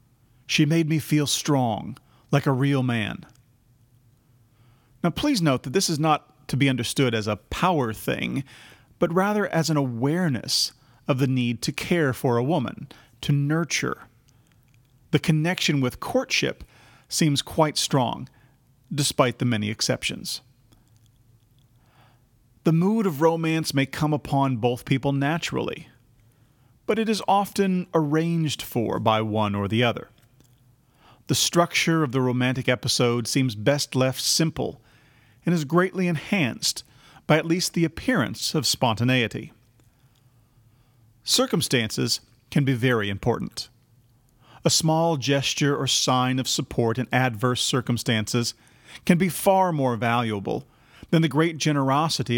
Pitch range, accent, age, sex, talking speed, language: 120-155 Hz, American, 40-59, male, 130 wpm, English